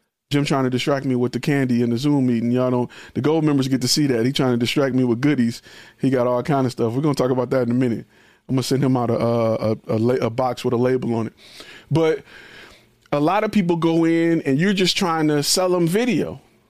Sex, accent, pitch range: male, American, 125-170 Hz